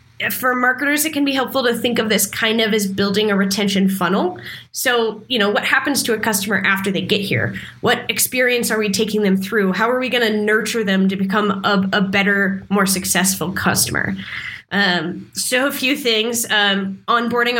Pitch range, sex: 195-235 Hz, female